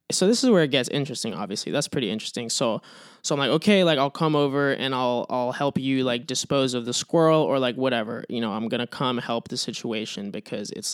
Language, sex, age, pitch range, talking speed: English, male, 20-39, 120-160 Hz, 240 wpm